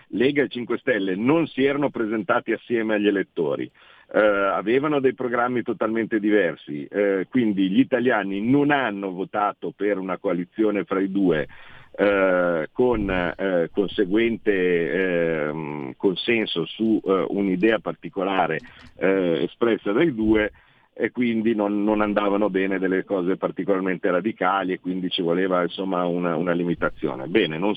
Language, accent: Italian, native